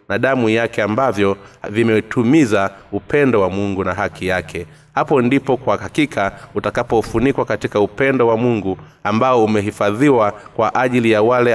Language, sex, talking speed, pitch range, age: Swahili, male, 135 wpm, 100-130 Hz, 30-49